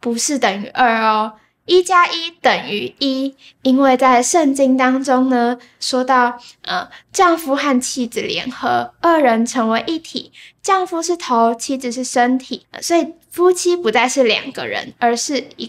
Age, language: 10-29, Chinese